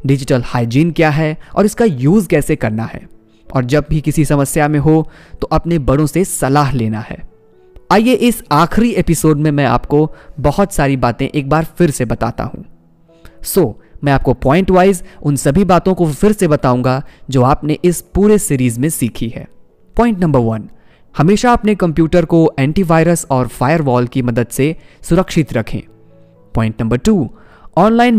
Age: 20-39